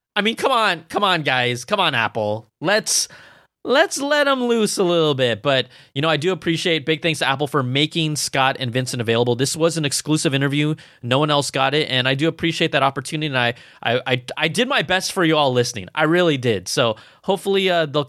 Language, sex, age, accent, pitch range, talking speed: English, male, 20-39, American, 135-170 Hz, 230 wpm